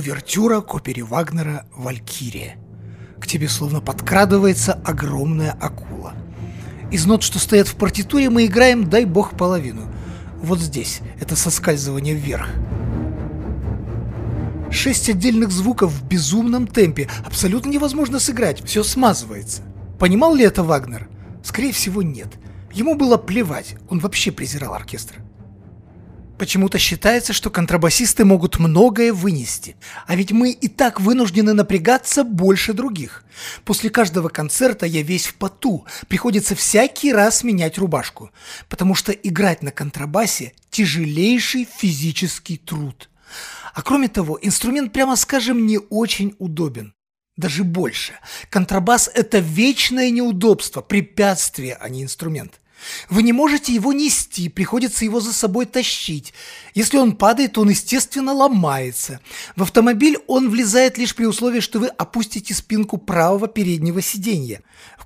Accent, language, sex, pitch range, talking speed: native, Russian, male, 145-225 Hz, 125 wpm